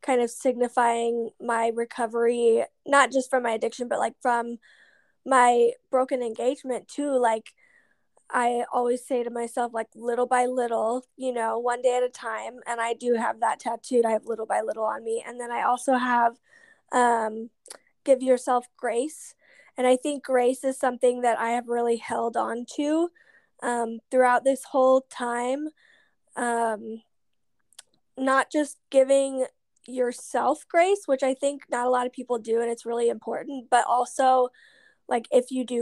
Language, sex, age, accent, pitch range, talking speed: English, female, 10-29, American, 235-270 Hz, 165 wpm